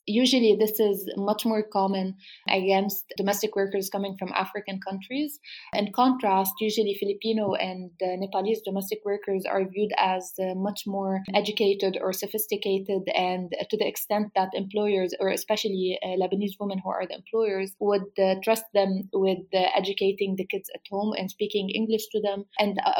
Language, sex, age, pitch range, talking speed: English, female, 20-39, 190-210 Hz, 170 wpm